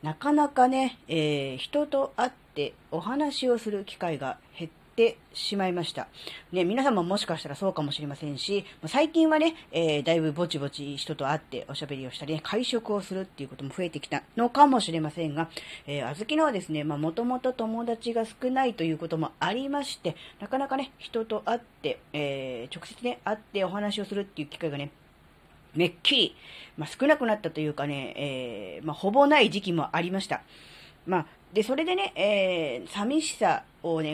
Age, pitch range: 40-59, 155-235 Hz